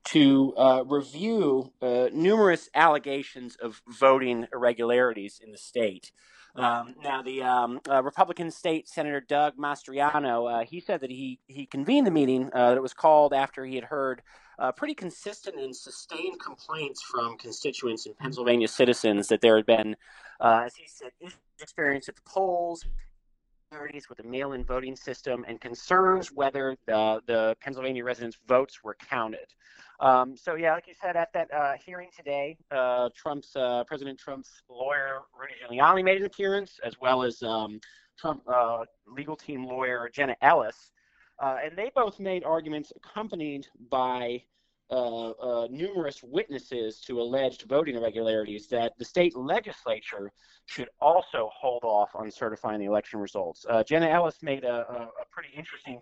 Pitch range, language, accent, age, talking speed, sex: 120-155 Hz, English, American, 30-49, 160 wpm, male